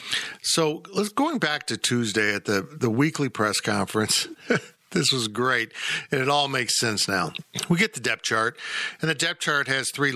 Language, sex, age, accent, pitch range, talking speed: English, male, 50-69, American, 105-160 Hz, 190 wpm